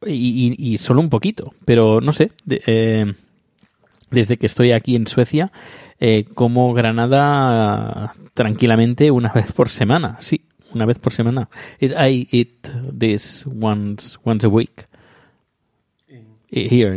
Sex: male